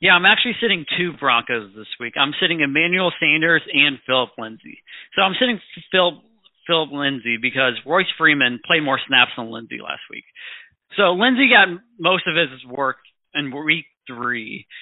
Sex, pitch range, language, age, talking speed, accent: male, 125-165 Hz, English, 40-59, 165 wpm, American